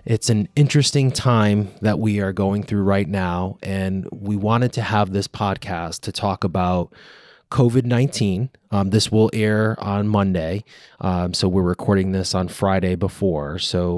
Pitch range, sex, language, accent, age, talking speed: 95-110 Hz, male, English, American, 20-39, 160 wpm